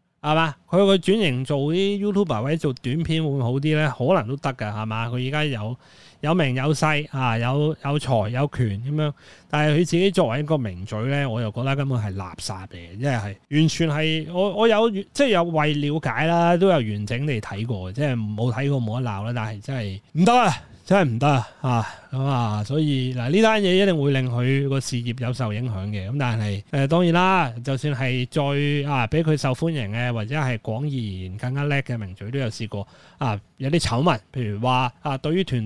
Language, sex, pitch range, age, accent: Chinese, male, 120-155 Hz, 30-49, native